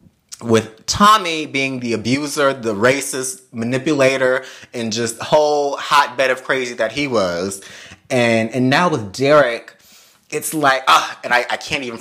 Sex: male